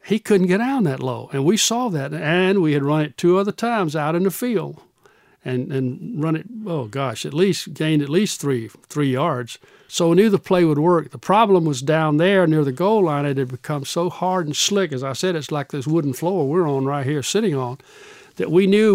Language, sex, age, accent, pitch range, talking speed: English, male, 60-79, American, 145-180 Hz, 240 wpm